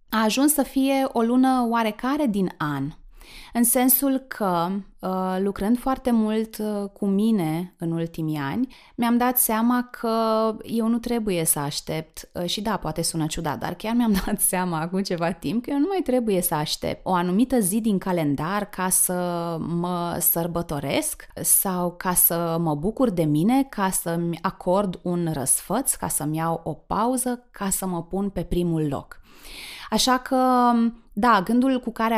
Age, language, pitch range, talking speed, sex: 20-39, Romanian, 175-220 Hz, 165 wpm, female